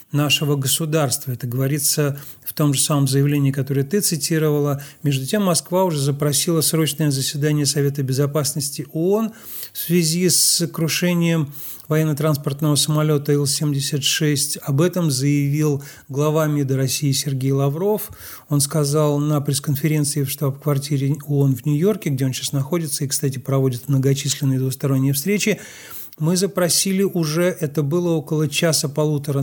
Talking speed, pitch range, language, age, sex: 130 wpm, 140-160 Hz, Russian, 40-59, male